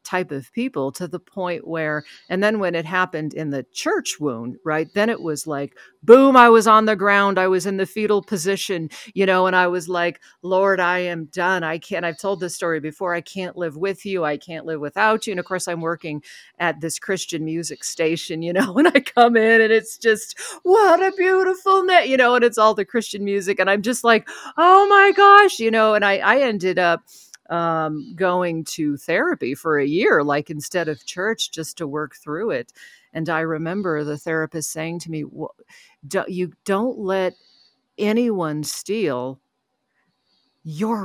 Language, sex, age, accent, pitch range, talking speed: English, female, 50-69, American, 165-225 Hz, 195 wpm